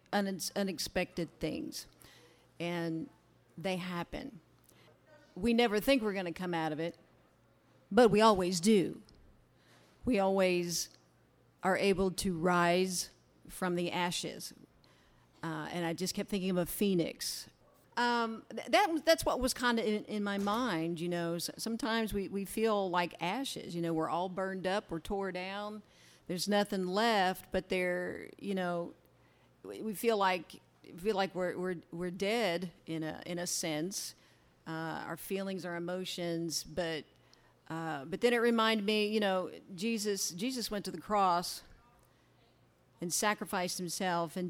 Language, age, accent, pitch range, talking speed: English, 50-69, American, 170-210 Hz, 150 wpm